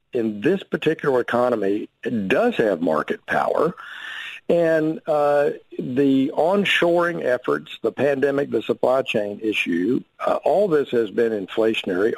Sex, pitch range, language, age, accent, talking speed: male, 110-160 Hz, English, 50-69, American, 125 wpm